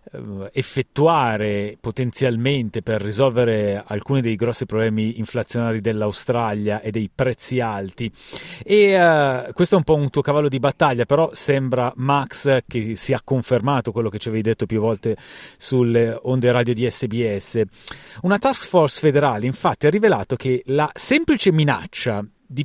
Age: 30-49